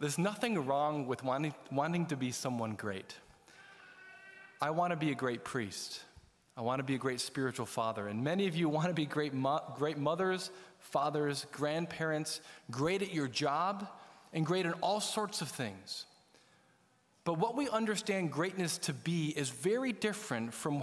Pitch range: 140-200 Hz